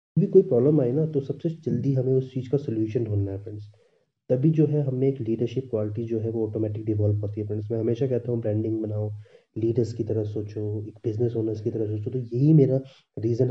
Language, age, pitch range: Hindi, 30-49, 105-130 Hz